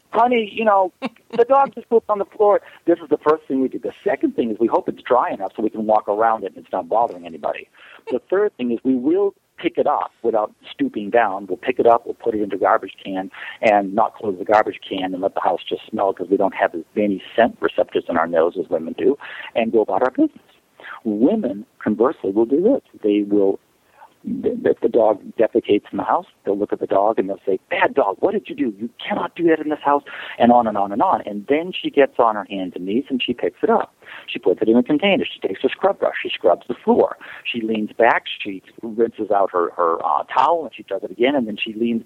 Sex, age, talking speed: male, 50-69, 260 wpm